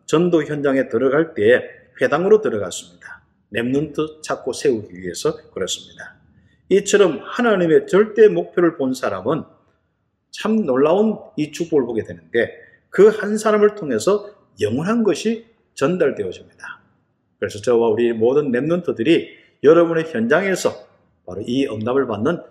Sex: male